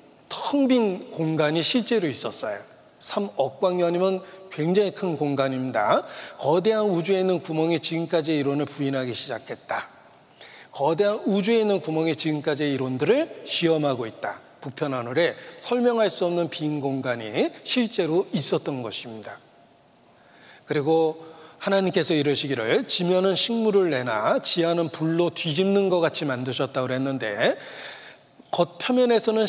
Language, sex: Korean, male